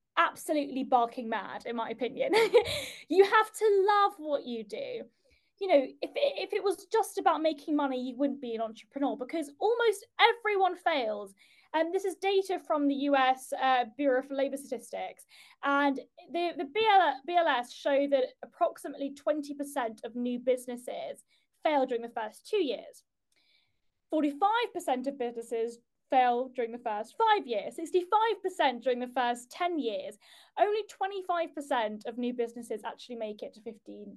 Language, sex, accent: English, female, British